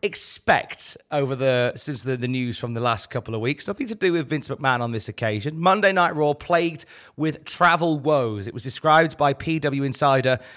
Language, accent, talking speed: English, British, 200 wpm